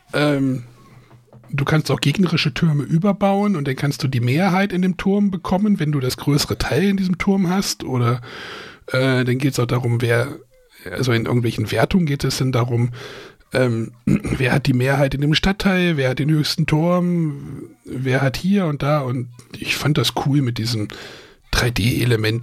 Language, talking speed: German, 180 wpm